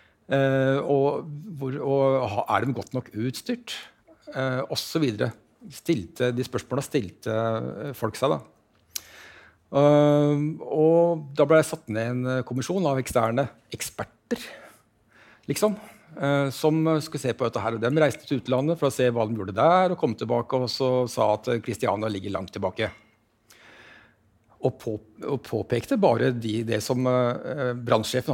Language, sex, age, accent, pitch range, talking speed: English, male, 60-79, Norwegian, 115-140 Hz, 145 wpm